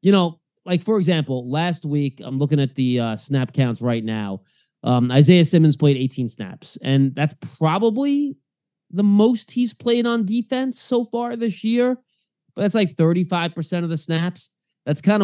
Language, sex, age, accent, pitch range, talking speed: English, male, 20-39, American, 135-170 Hz, 175 wpm